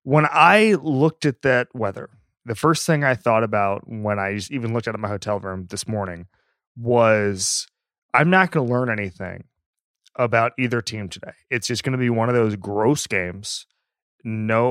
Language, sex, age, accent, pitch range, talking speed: English, male, 30-49, American, 110-130 Hz, 185 wpm